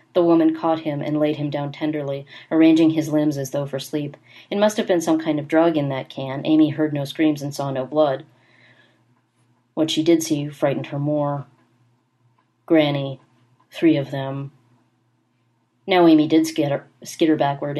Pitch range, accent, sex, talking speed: 135-155 Hz, American, female, 175 wpm